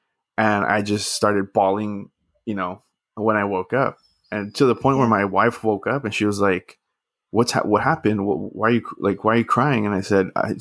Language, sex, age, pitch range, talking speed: English, male, 20-39, 100-115 Hz, 230 wpm